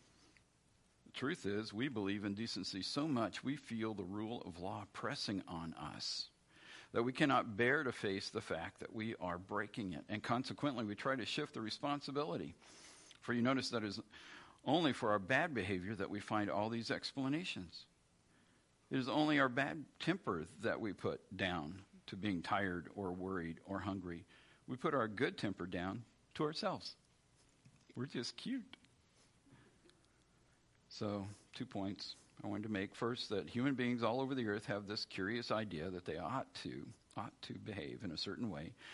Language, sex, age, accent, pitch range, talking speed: English, male, 50-69, American, 95-125 Hz, 170 wpm